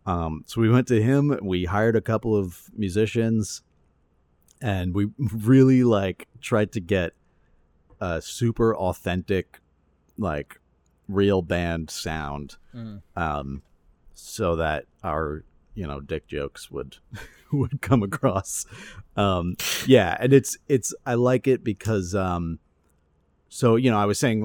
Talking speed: 135 wpm